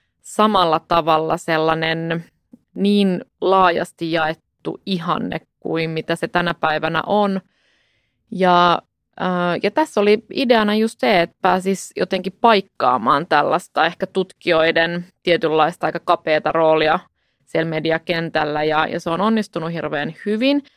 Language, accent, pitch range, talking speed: Finnish, native, 170-210 Hz, 115 wpm